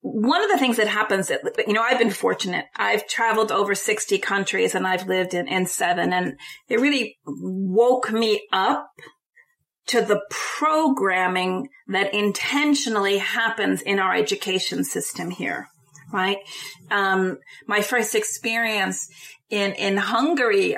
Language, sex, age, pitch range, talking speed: English, female, 30-49, 195-240 Hz, 140 wpm